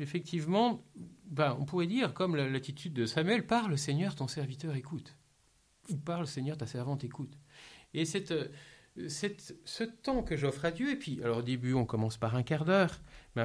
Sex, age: male, 50-69